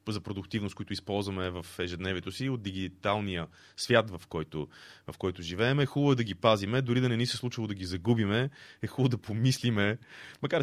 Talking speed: 190 wpm